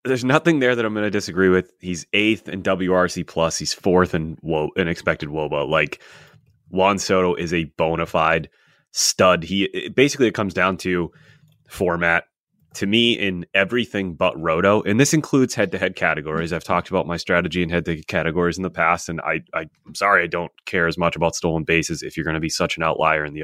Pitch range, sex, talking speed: 85-115 Hz, male, 220 wpm